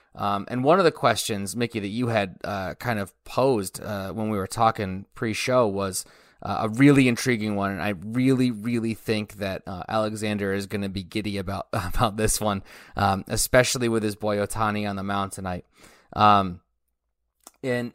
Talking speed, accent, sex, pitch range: 185 wpm, American, male, 100-125 Hz